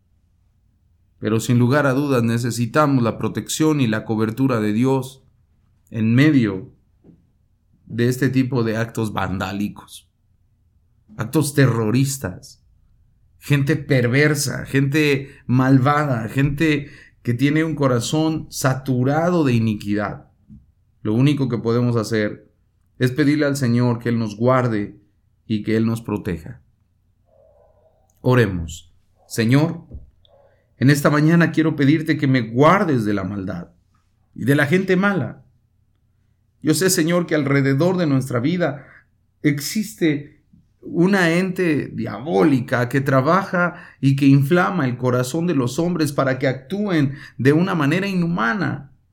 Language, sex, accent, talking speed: English, male, Mexican, 120 wpm